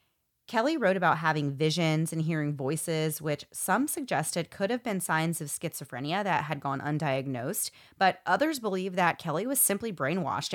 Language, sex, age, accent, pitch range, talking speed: English, female, 30-49, American, 155-190 Hz, 165 wpm